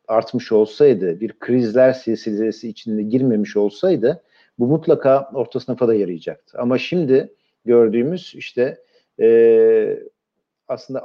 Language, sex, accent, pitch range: Turkish, male, native, 110-155 Hz